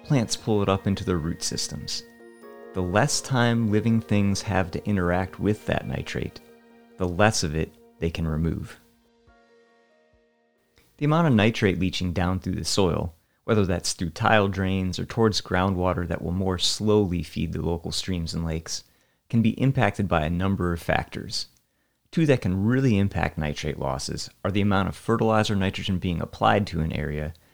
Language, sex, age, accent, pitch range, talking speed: English, male, 30-49, American, 85-110 Hz, 170 wpm